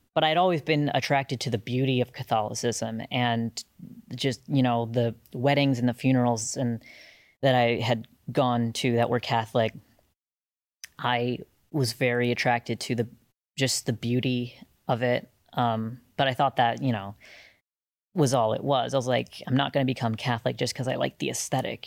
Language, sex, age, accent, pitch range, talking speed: English, female, 20-39, American, 120-140 Hz, 180 wpm